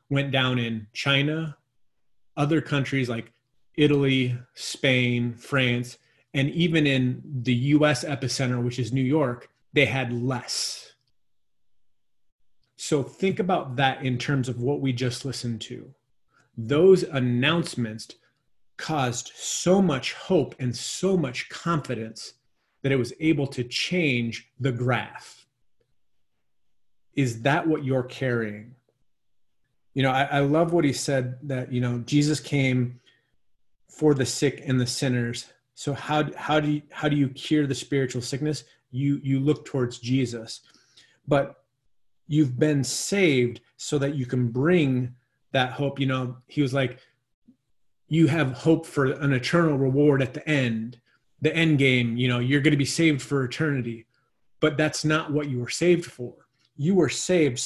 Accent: American